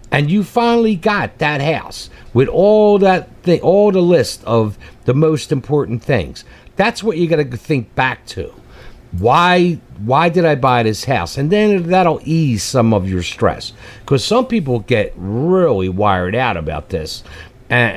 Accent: American